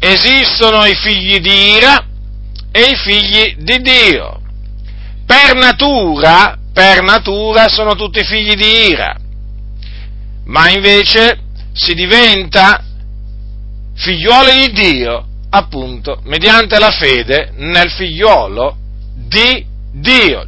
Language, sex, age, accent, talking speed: Italian, male, 50-69, native, 100 wpm